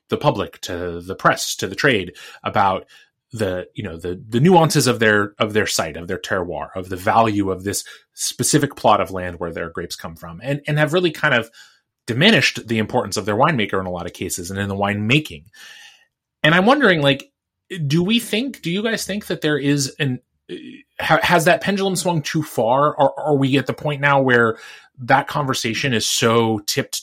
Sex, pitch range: male, 105-150 Hz